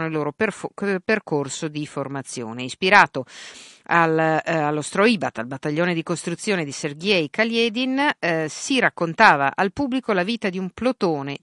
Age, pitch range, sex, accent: 50-69, 145-195 Hz, female, native